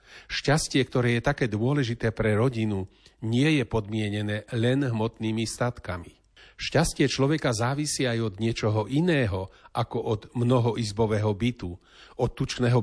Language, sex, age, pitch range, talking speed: Slovak, male, 40-59, 110-135 Hz, 120 wpm